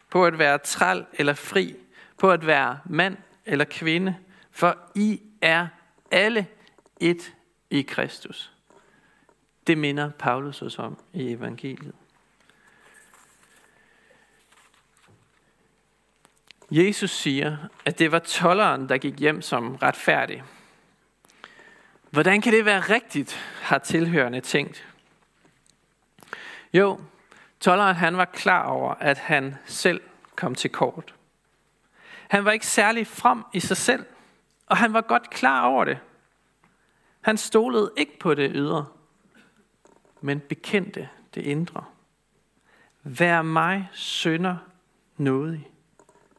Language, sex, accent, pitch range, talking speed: Danish, male, native, 150-200 Hz, 110 wpm